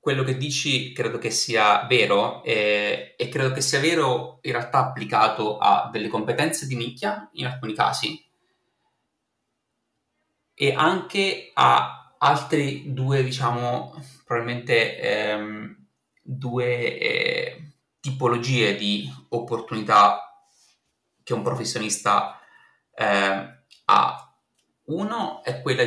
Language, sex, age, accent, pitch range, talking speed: Italian, male, 30-49, native, 115-150 Hz, 105 wpm